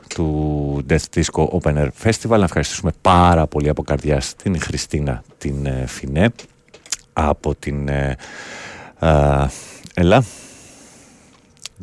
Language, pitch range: Greek, 75-110 Hz